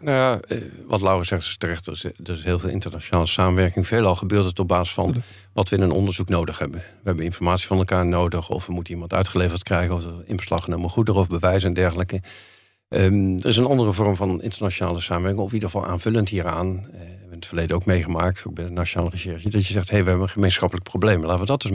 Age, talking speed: 50-69, 245 wpm